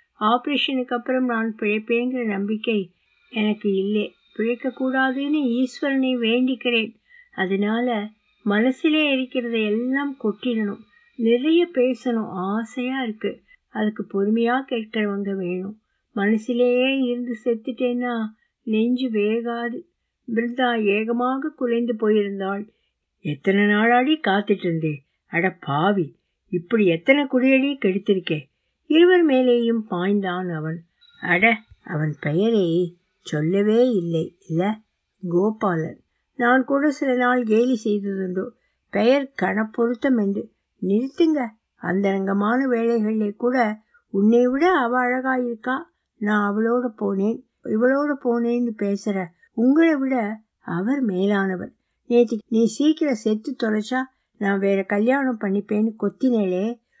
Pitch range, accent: 200-255 Hz, native